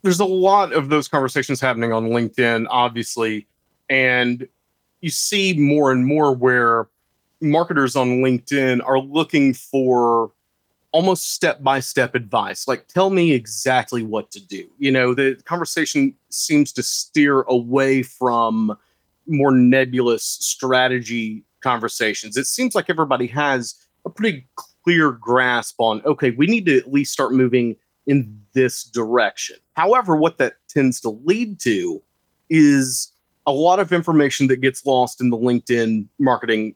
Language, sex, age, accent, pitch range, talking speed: English, male, 30-49, American, 120-150 Hz, 140 wpm